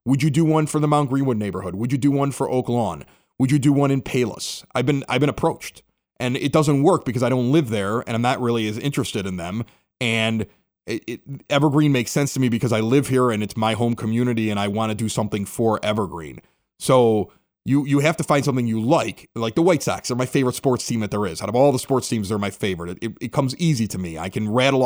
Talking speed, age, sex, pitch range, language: 265 wpm, 30-49, male, 110-140 Hz, English